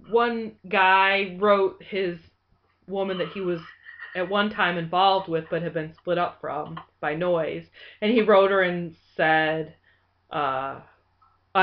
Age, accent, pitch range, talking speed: 20-39, American, 175-220 Hz, 145 wpm